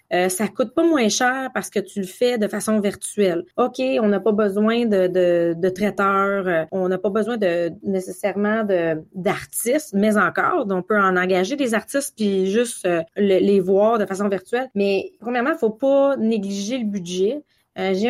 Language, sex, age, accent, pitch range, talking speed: French, female, 30-49, Canadian, 190-240 Hz, 200 wpm